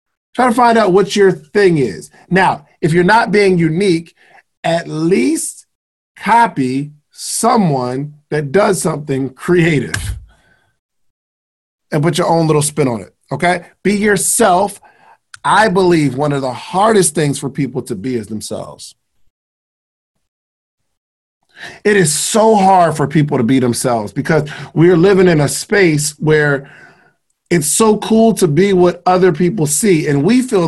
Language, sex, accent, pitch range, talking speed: English, male, American, 140-185 Hz, 145 wpm